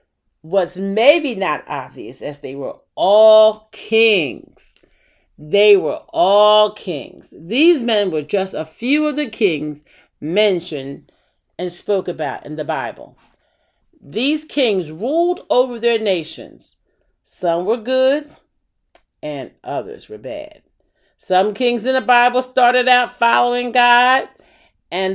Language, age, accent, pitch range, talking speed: English, 40-59, American, 185-280 Hz, 125 wpm